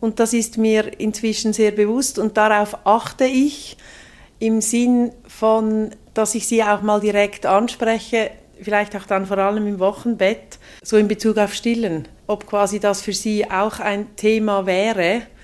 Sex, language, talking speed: female, German, 165 wpm